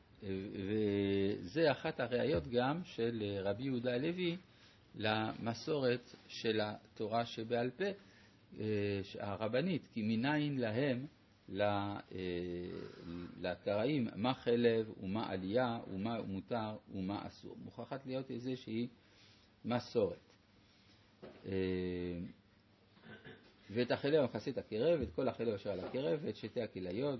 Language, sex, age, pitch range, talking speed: Hebrew, male, 50-69, 100-125 Hz, 95 wpm